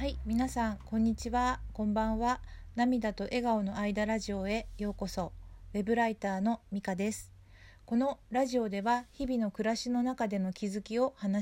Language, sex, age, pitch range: Japanese, female, 40-59, 195-240 Hz